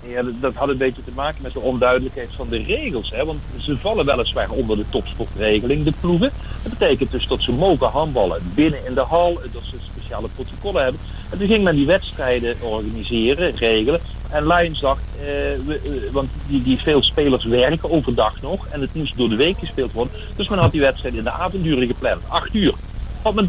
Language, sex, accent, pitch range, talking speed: Dutch, male, Dutch, 115-155 Hz, 210 wpm